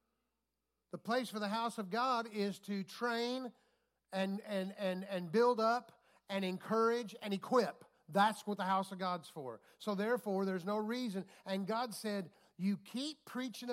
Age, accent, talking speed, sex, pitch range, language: 50-69, American, 165 wpm, male, 195-255 Hz, English